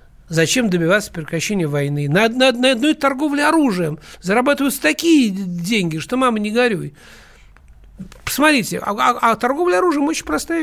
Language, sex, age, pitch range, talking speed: Russian, male, 60-79, 165-245 Hz, 135 wpm